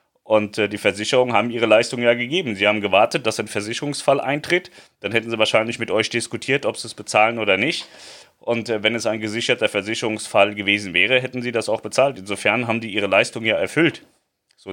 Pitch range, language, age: 105-120 Hz, German, 30-49